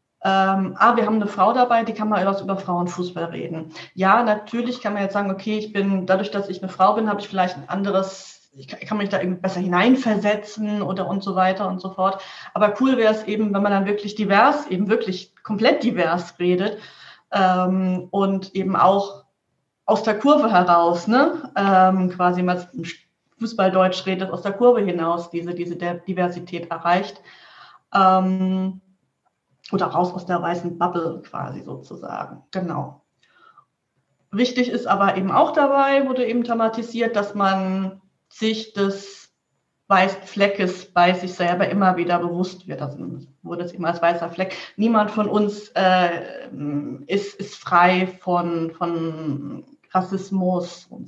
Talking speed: 160 wpm